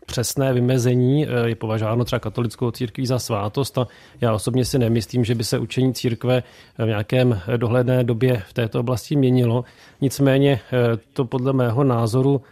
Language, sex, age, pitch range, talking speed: Czech, male, 30-49, 120-130 Hz, 155 wpm